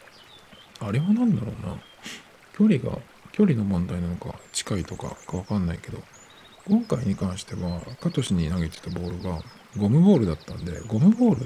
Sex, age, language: male, 50-69, Japanese